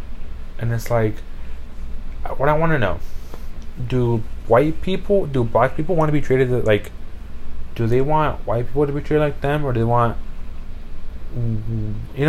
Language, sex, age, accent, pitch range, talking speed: English, male, 20-39, American, 80-125 Hz, 180 wpm